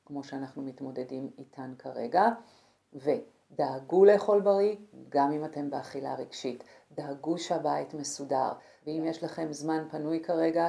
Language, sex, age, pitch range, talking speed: Hebrew, female, 50-69, 140-170 Hz, 125 wpm